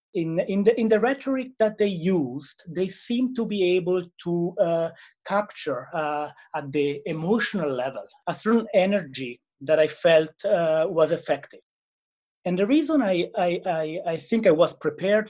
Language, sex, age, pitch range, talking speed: English, male, 30-49, 155-215 Hz, 165 wpm